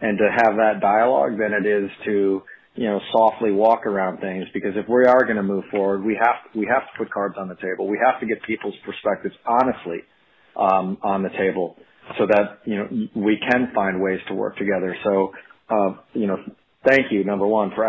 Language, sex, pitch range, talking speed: English, male, 100-125 Hz, 215 wpm